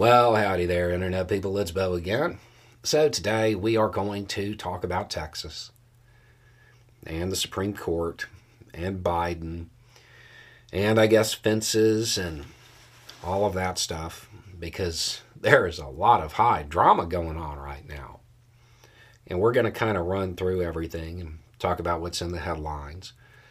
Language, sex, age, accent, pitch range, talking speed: English, male, 40-59, American, 95-120 Hz, 155 wpm